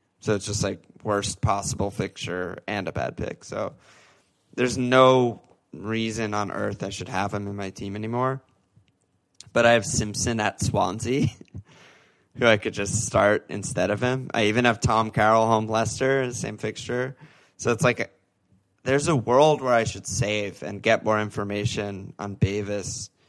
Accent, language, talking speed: American, English, 165 wpm